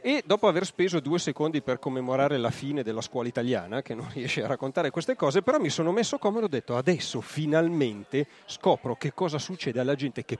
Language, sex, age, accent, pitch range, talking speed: Italian, male, 40-59, native, 110-140 Hz, 210 wpm